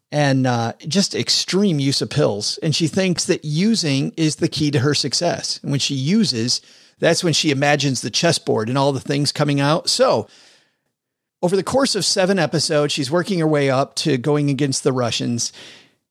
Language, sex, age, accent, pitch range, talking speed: English, male, 40-59, American, 140-180 Hz, 190 wpm